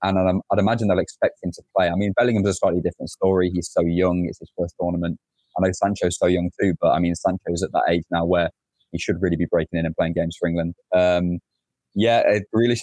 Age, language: 20-39, English